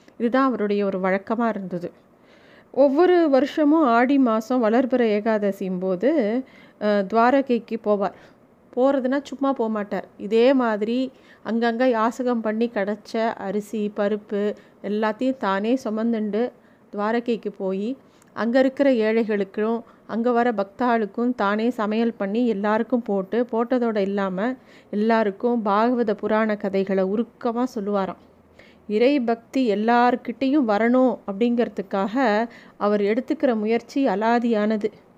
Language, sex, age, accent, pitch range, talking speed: Tamil, female, 30-49, native, 210-255 Hz, 95 wpm